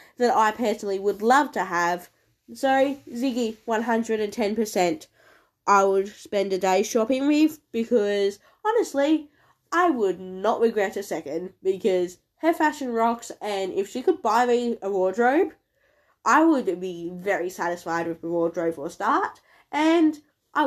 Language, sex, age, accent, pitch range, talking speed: English, female, 10-29, Australian, 185-265 Hz, 145 wpm